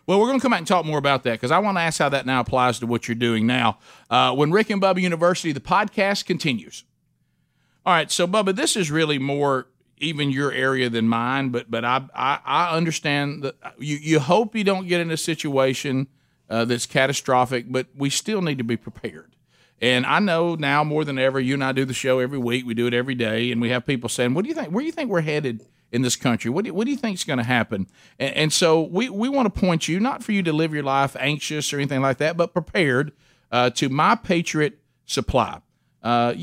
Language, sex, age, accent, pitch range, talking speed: English, male, 50-69, American, 125-165 Hz, 245 wpm